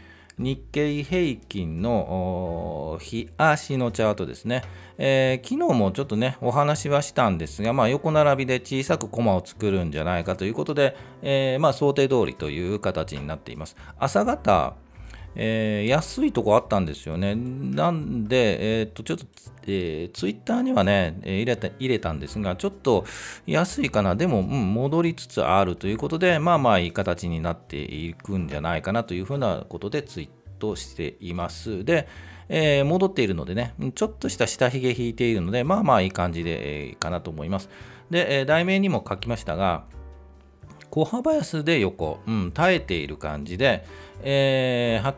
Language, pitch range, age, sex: Japanese, 85-135 Hz, 40-59, male